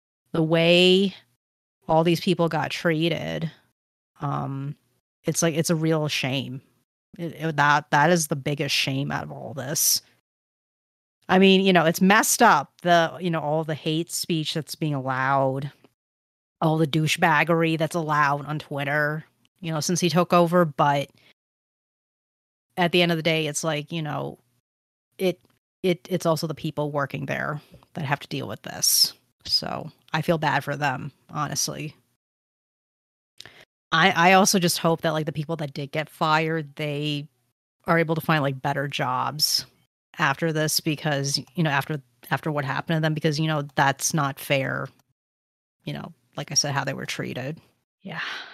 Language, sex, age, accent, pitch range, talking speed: English, female, 30-49, American, 140-170 Hz, 170 wpm